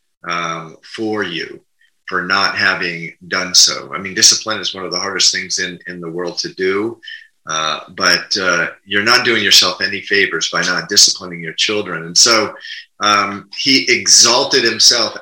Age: 30-49